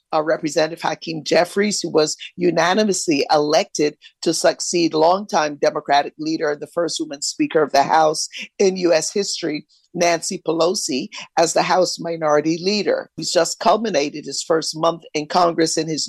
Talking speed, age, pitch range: 155 wpm, 50-69, 155-190 Hz